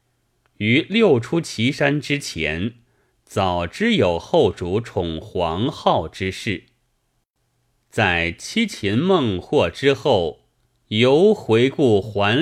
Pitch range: 95-125 Hz